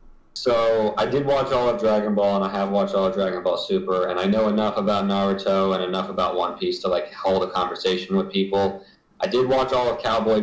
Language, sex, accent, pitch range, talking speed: English, male, American, 95-125 Hz, 235 wpm